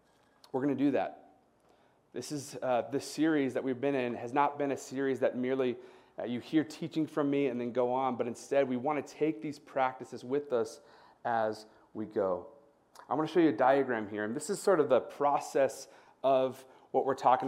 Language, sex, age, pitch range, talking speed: English, male, 30-49, 130-160 Hz, 215 wpm